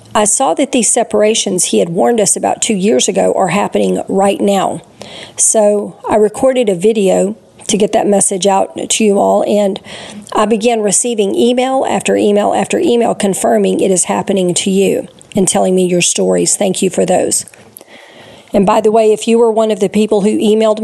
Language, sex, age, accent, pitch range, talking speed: English, female, 40-59, American, 190-220 Hz, 195 wpm